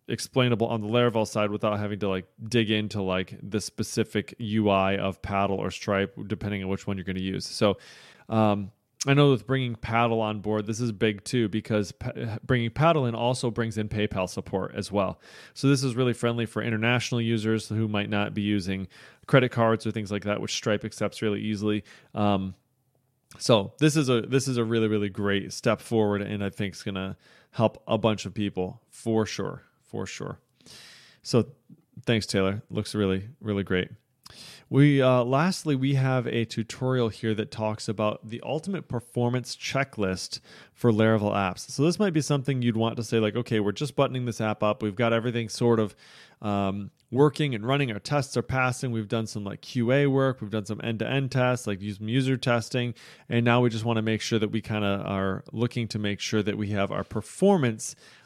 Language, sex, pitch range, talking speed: English, male, 105-125 Hz, 200 wpm